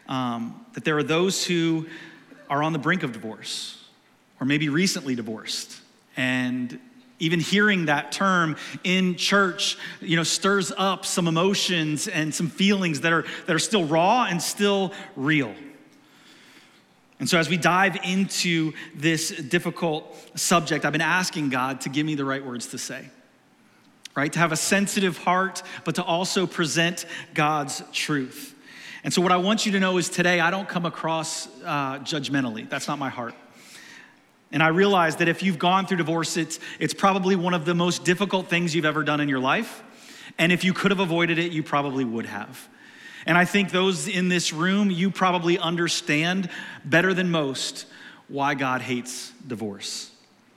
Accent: American